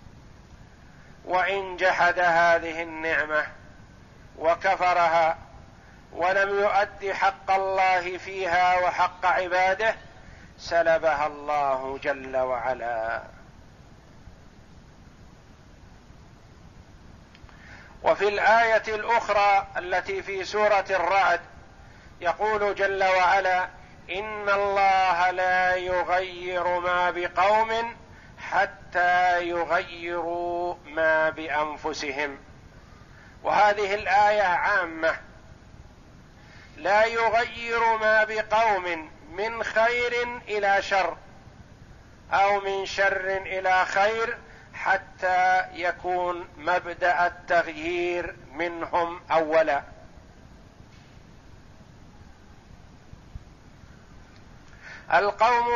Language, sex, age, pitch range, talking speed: Arabic, male, 50-69, 160-195 Hz, 65 wpm